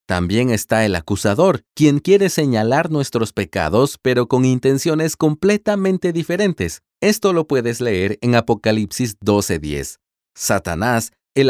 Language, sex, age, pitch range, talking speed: Spanish, male, 40-59, 105-155 Hz, 120 wpm